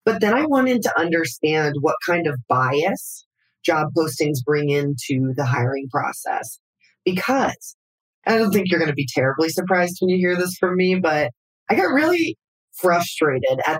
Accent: American